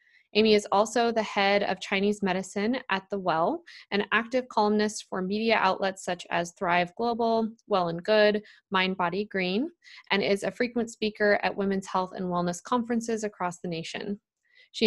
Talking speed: 170 wpm